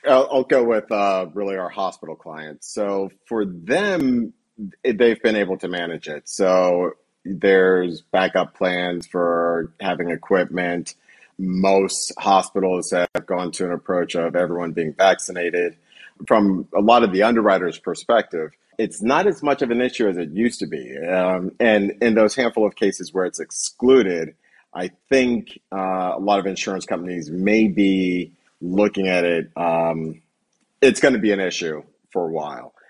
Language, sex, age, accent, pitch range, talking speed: English, male, 30-49, American, 85-100 Hz, 160 wpm